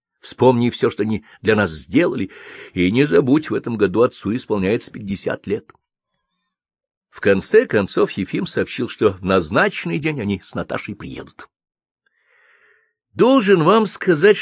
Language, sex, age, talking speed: Russian, male, 50-69, 135 wpm